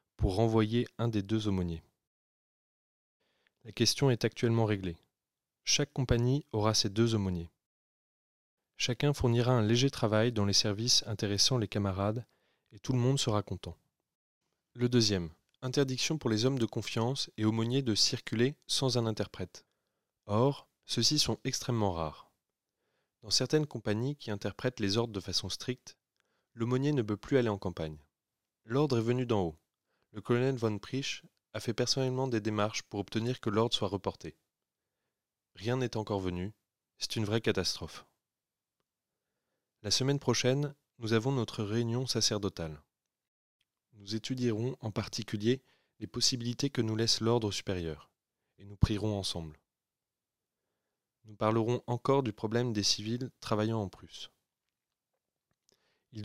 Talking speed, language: 140 wpm, French